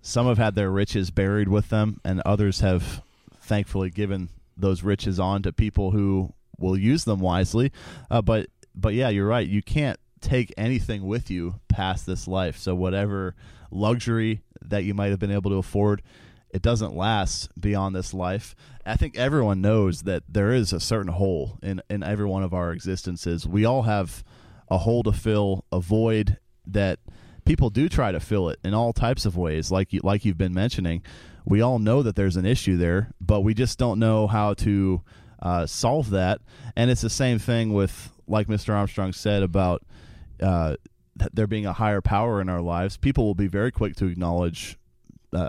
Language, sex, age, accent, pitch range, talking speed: English, male, 30-49, American, 95-110 Hz, 190 wpm